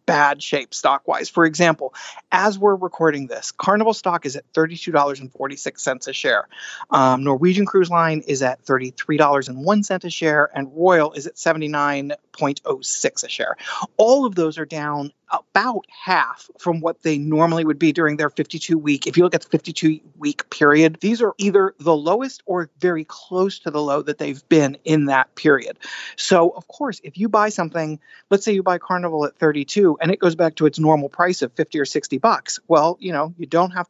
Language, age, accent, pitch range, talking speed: English, 30-49, American, 150-185 Hz, 190 wpm